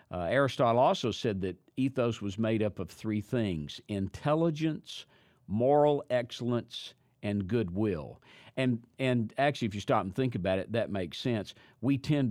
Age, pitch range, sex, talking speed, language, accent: 50-69, 100-130 Hz, male, 155 wpm, English, American